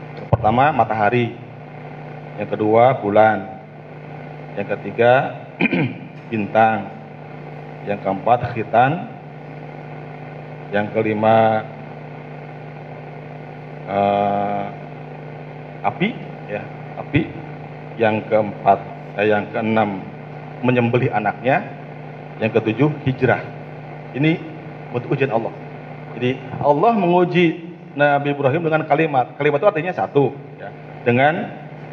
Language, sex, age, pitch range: Malay, male, 50-69, 115-150 Hz